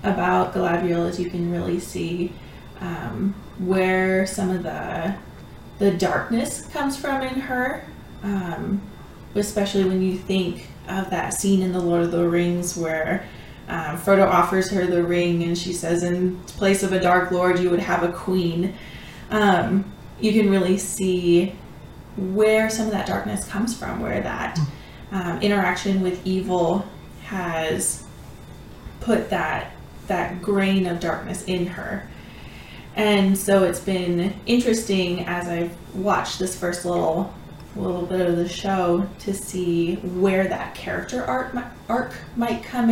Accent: American